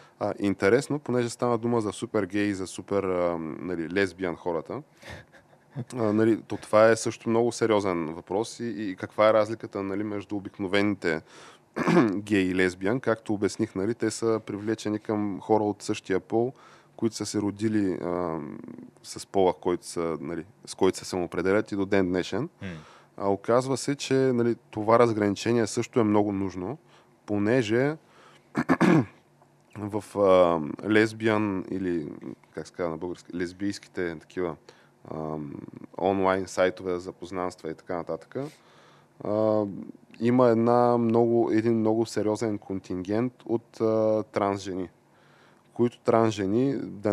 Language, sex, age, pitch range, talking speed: Bulgarian, male, 20-39, 95-115 Hz, 130 wpm